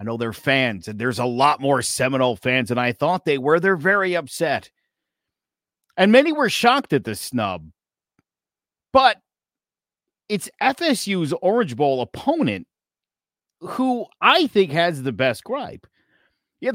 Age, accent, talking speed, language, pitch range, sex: 50-69, American, 145 wpm, English, 135-220 Hz, male